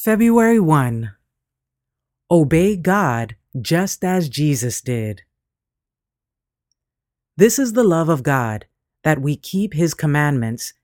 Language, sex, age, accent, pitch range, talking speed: English, female, 30-49, American, 125-170 Hz, 105 wpm